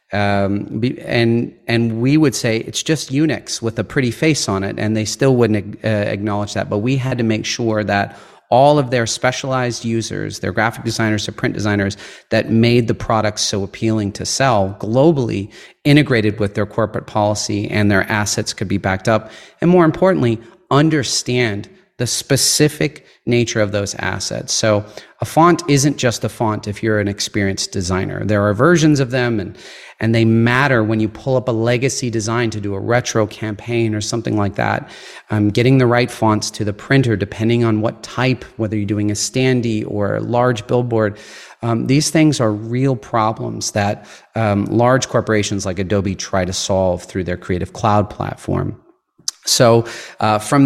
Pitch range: 105-125 Hz